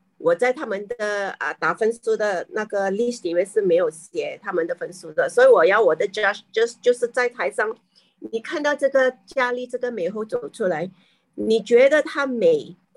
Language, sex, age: Chinese, female, 40-59